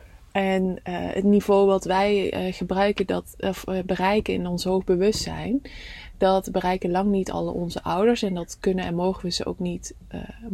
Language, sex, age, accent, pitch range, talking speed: English, female, 20-39, Dutch, 180-205 Hz, 190 wpm